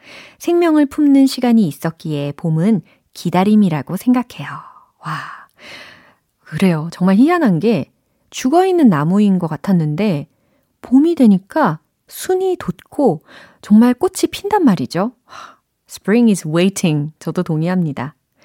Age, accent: 30-49, native